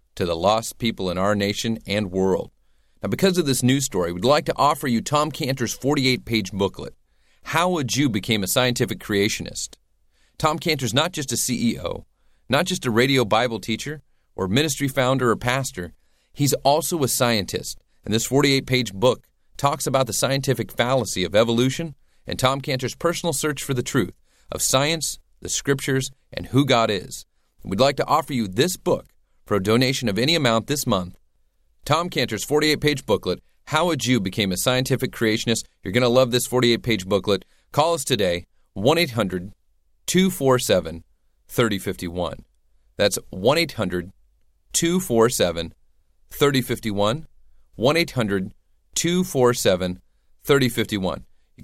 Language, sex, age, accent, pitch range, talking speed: English, male, 40-59, American, 95-135 Hz, 140 wpm